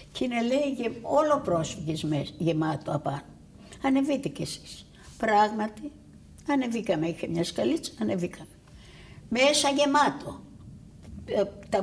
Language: Greek